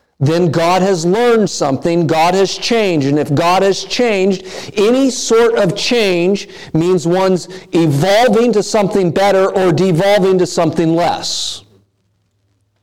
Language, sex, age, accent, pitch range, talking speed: English, male, 50-69, American, 150-200 Hz, 130 wpm